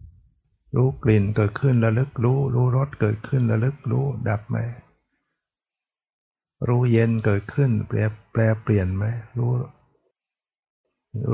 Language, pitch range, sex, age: Thai, 105-125 Hz, male, 60-79